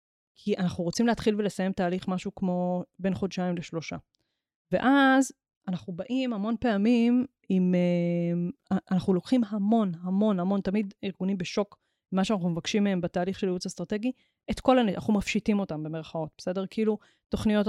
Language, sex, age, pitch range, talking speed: Hebrew, female, 20-39, 180-220 Hz, 150 wpm